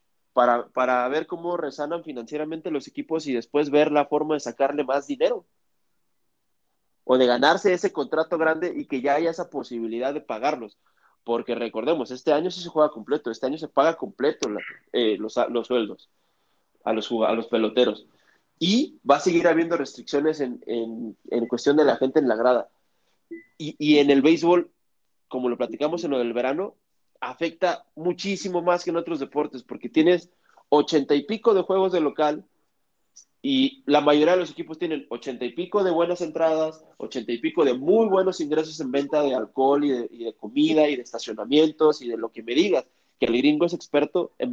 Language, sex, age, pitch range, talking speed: Spanish, male, 30-49, 125-170 Hz, 190 wpm